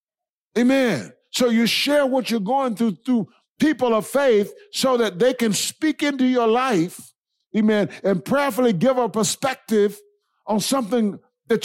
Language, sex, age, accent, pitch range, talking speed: English, male, 60-79, American, 220-275 Hz, 150 wpm